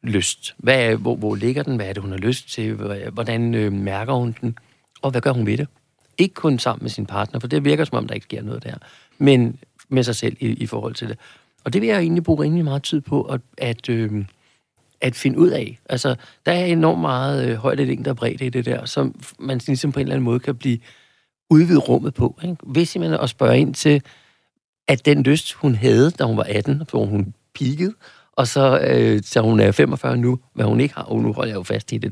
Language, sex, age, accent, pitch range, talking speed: Danish, male, 60-79, native, 115-145 Hz, 240 wpm